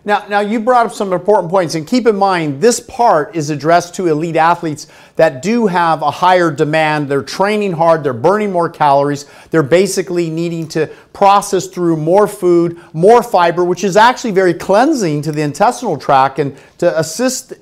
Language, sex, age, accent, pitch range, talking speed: English, male, 40-59, American, 160-205 Hz, 185 wpm